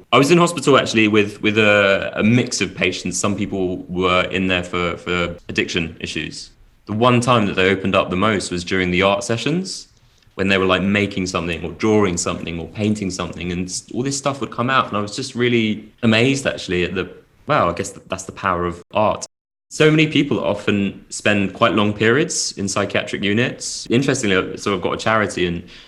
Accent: British